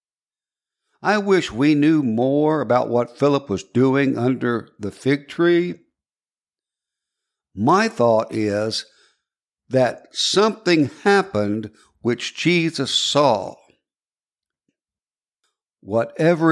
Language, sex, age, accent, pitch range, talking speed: English, male, 60-79, American, 115-165 Hz, 85 wpm